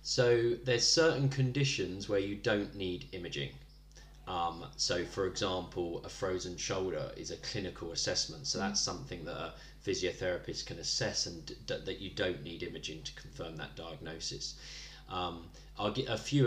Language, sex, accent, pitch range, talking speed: English, male, British, 85-110 Hz, 160 wpm